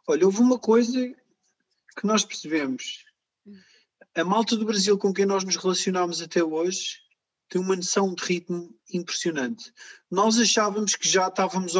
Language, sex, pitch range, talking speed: Portuguese, male, 175-220 Hz, 155 wpm